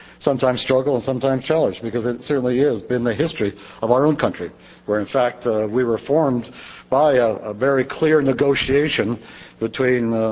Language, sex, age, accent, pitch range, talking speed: English, male, 60-79, American, 110-145 Hz, 180 wpm